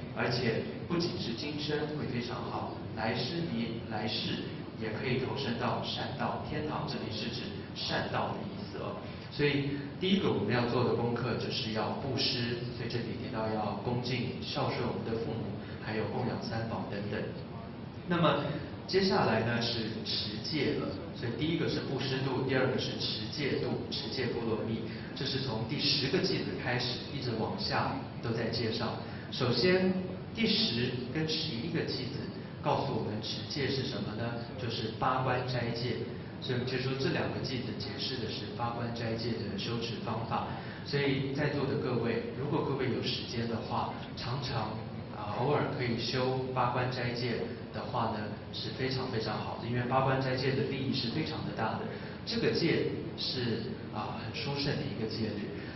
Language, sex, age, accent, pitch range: English, male, 30-49, Chinese, 110-130 Hz